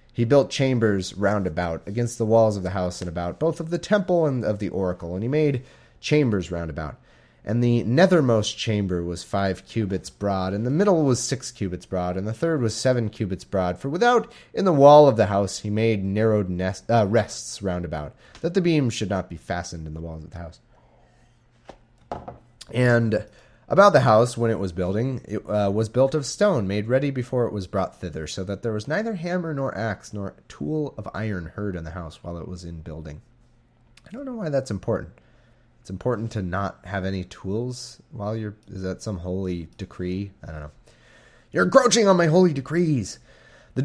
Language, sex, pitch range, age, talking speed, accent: English, male, 95-130 Hz, 30-49, 205 wpm, American